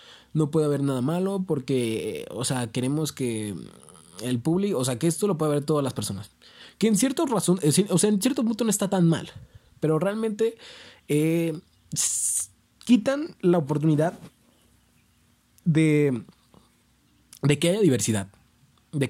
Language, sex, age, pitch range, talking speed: Spanish, male, 20-39, 120-165 Hz, 150 wpm